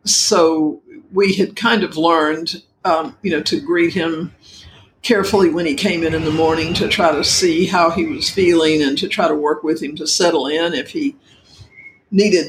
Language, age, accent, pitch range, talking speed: English, 60-79, American, 160-210 Hz, 195 wpm